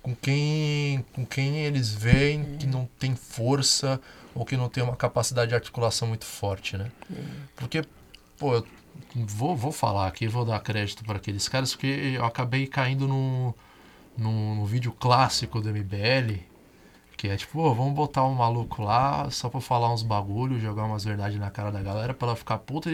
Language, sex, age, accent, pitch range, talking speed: Portuguese, male, 20-39, Brazilian, 115-145 Hz, 185 wpm